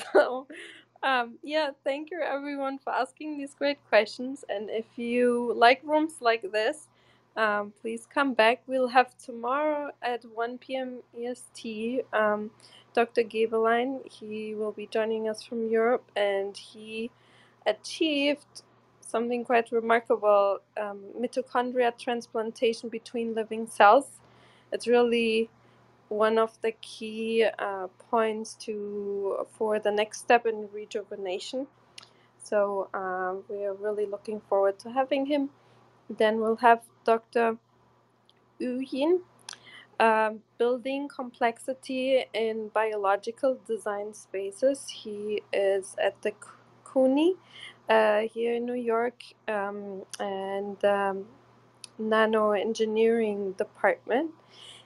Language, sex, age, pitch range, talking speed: English, female, 20-39, 210-250 Hz, 115 wpm